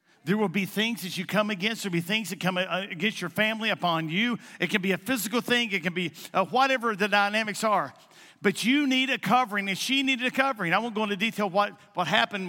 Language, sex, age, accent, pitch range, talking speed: English, male, 50-69, American, 175-225 Hz, 245 wpm